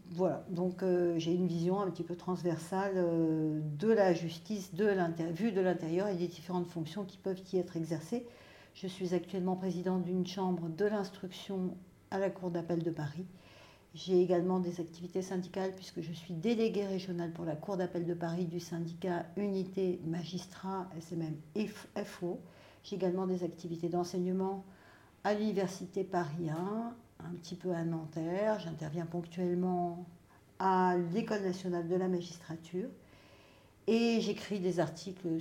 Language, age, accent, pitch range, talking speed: French, 60-79, French, 165-190 Hz, 150 wpm